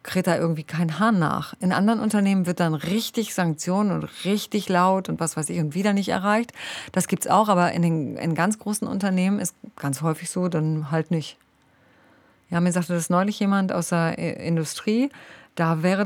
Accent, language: German, German